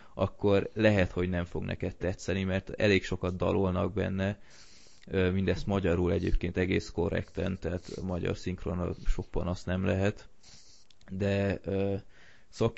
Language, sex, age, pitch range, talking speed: Hungarian, male, 20-39, 90-100 Hz, 130 wpm